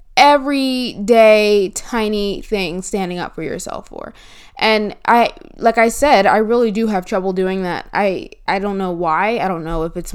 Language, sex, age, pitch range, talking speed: English, female, 20-39, 185-220 Hz, 185 wpm